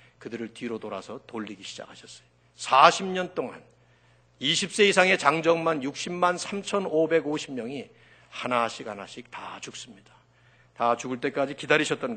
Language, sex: Korean, male